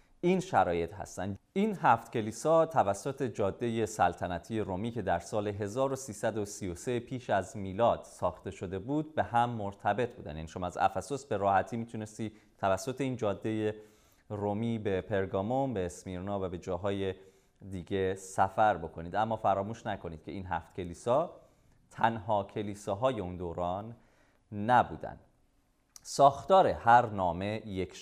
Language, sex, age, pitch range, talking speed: Persian, male, 30-49, 95-125 Hz, 130 wpm